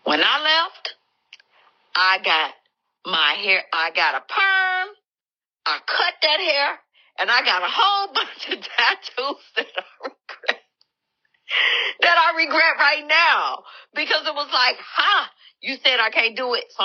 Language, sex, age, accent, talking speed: English, female, 50-69, American, 155 wpm